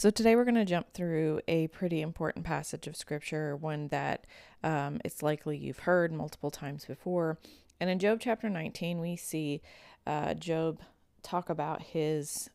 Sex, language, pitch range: female, English, 155-180 Hz